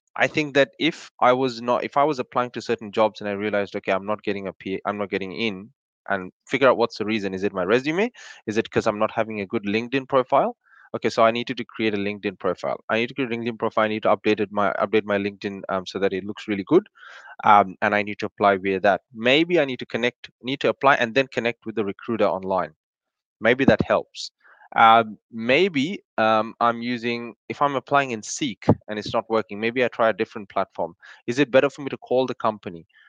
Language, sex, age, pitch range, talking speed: English, male, 20-39, 105-125 Hz, 245 wpm